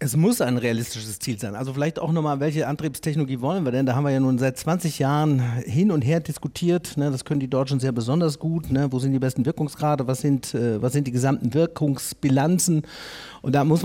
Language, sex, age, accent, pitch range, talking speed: German, male, 40-59, German, 130-170 Hz, 210 wpm